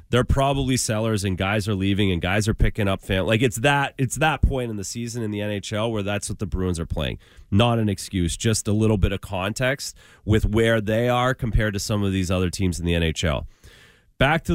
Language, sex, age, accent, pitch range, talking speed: English, male, 30-49, American, 100-140 Hz, 235 wpm